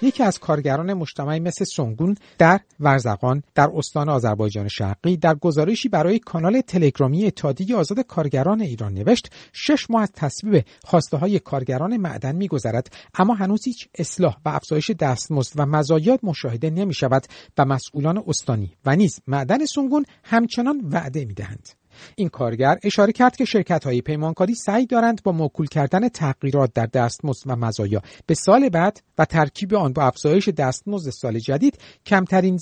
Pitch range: 135-200 Hz